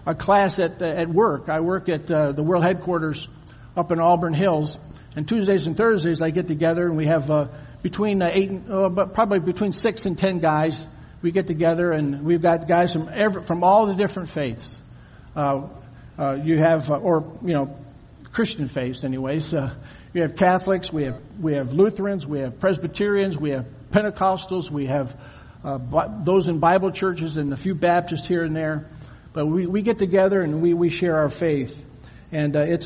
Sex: male